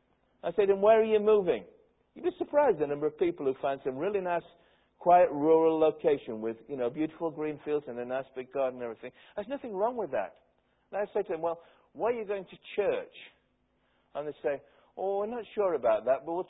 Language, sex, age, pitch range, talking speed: English, male, 60-79, 145-215 Hz, 235 wpm